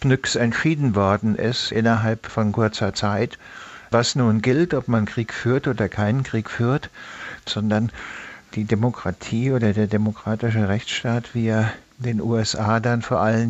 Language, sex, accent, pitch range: German, male, German, 105-115 Hz